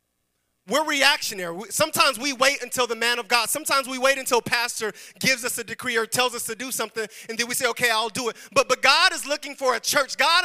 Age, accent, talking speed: 30-49, American, 240 wpm